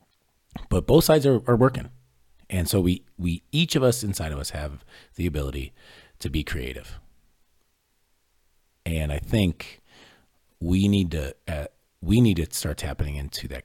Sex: male